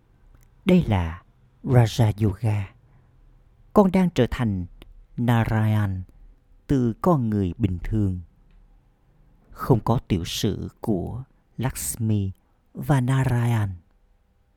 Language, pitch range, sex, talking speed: Vietnamese, 95-125 Hz, male, 90 wpm